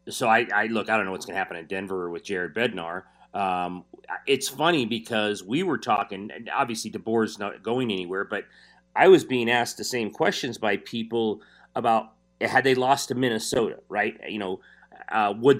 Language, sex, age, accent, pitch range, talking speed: English, male, 40-59, American, 110-130 Hz, 195 wpm